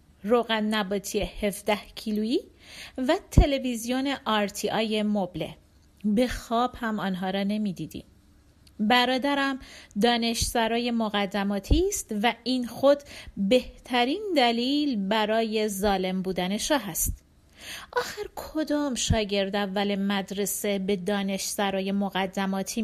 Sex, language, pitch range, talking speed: female, Persian, 195-250 Hz, 90 wpm